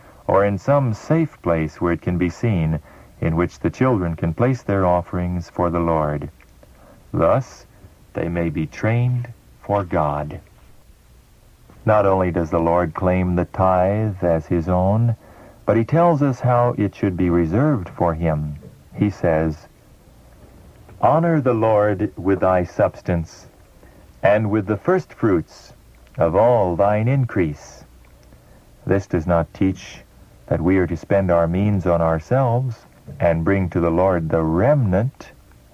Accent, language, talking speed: American, English, 145 wpm